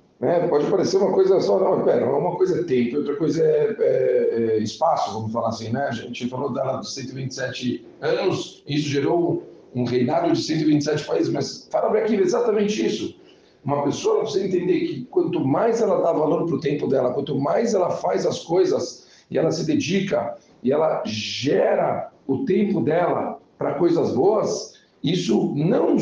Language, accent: Portuguese, Brazilian